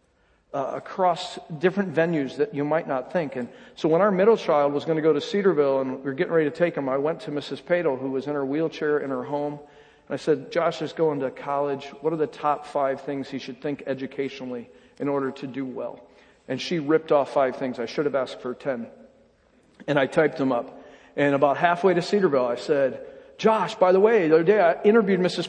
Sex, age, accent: male, 40-59, American